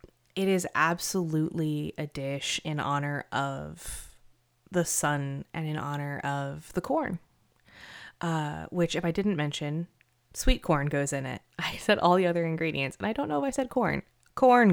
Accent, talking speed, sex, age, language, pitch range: American, 170 wpm, female, 20-39, English, 150-185 Hz